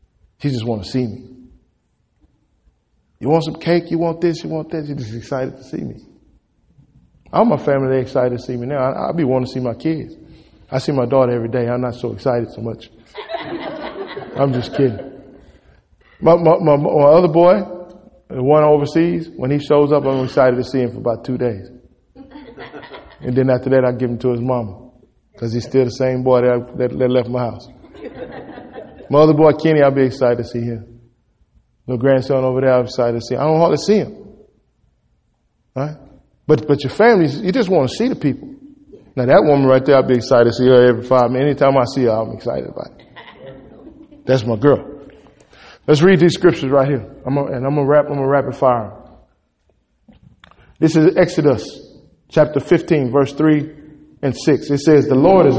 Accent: American